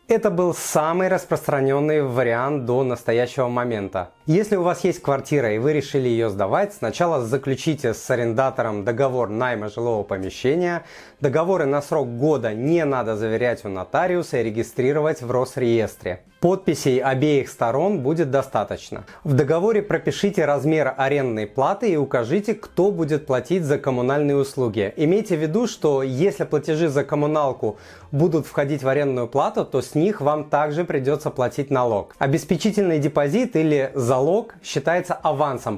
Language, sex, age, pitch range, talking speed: Russian, male, 30-49, 130-175 Hz, 145 wpm